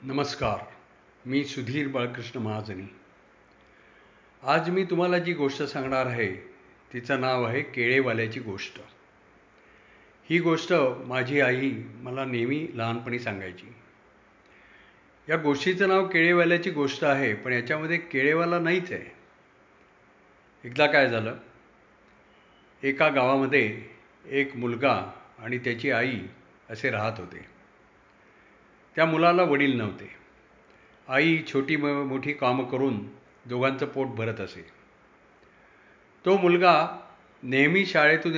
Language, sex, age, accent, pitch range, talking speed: Marathi, male, 50-69, native, 120-150 Hz, 90 wpm